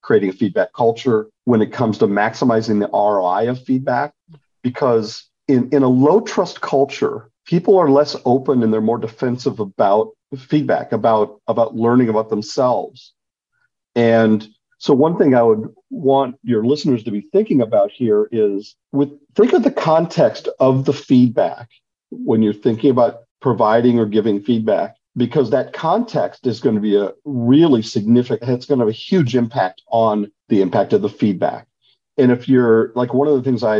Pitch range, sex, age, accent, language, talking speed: 110-140 Hz, male, 50-69, American, English, 175 wpm